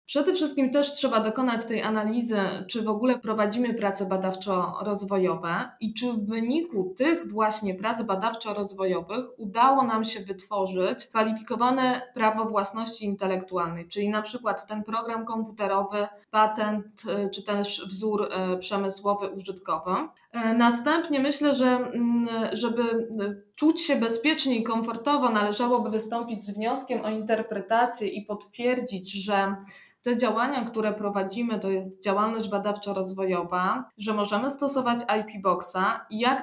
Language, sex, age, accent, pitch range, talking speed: Polish, female, 20-39, native, 200-240 Hz, 120 wpm